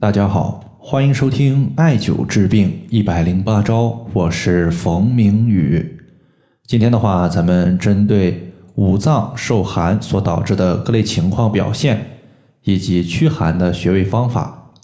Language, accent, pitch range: Chinese, native, 90-115 Hz